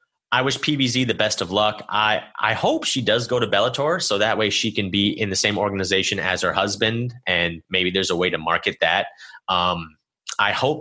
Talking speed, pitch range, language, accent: 215 wpm, 100-145 Hz, English, American